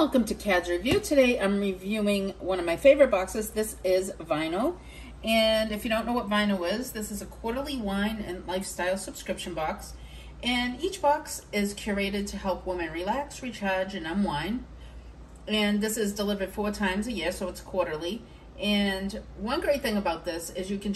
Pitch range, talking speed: 170-215 Hz, 185 wpm